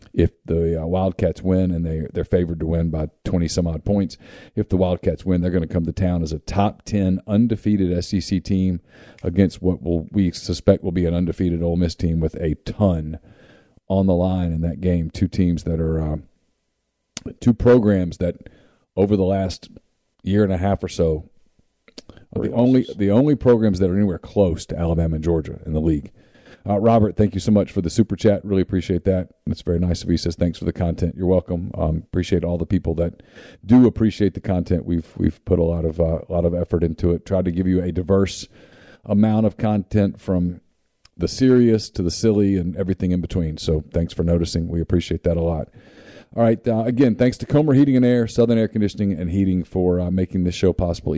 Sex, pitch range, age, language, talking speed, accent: male, 85-100 Hz, 40-59, English, 210 wpm, American